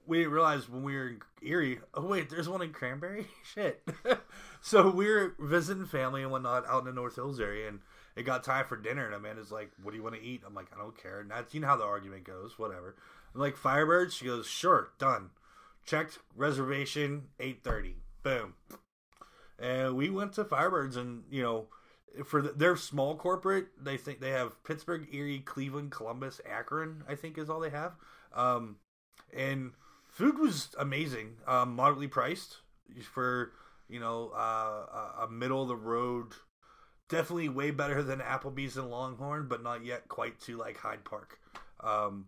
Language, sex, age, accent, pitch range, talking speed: English, male, 20-39, American, 120-155 Hz, 185 wpm